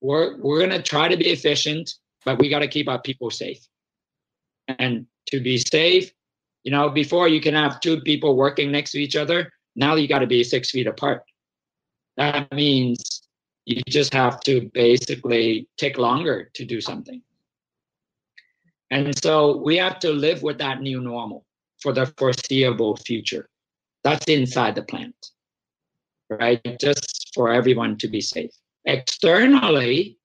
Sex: male